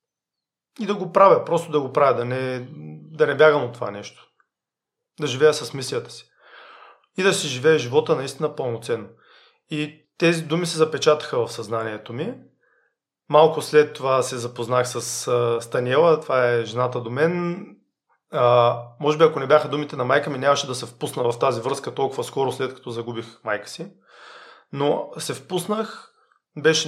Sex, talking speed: male, 170 wpm